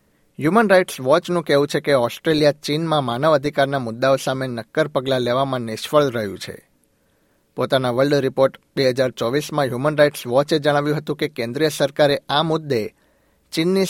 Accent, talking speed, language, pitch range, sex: native, 145 wpm, Gujarati, 130-150 Hz, male